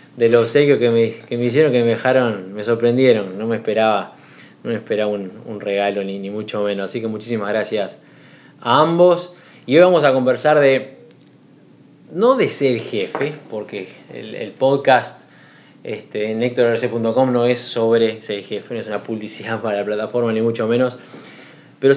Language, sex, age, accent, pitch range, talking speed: Spanish, male, 20-39, Argentinian, 110-135 Hz, 175 wpm